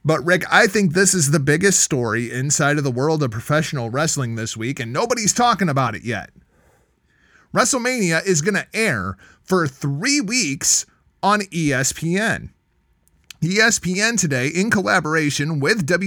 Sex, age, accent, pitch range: male, 30-49, American, 135-185 Hz